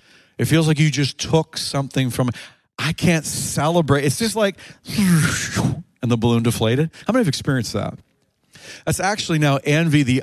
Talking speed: 170 wpm